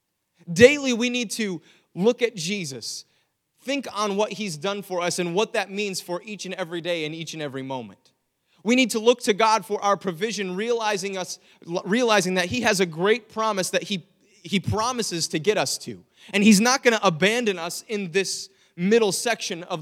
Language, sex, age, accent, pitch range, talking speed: English, male, 30-49, American, 160-215 Hz, 195 wpm